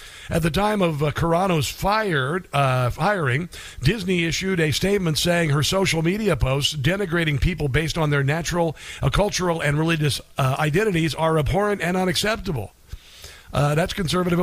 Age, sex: 50-69, male